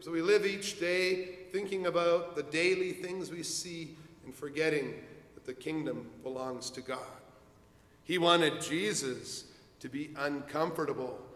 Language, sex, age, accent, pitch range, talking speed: English, male, 50-69, American, 130-165 Hz, 135 wpm